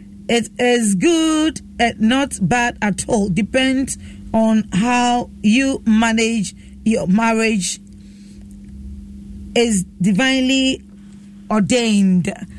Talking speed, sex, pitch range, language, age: 85 wpm, female, 200-250 Hz, English, 40-59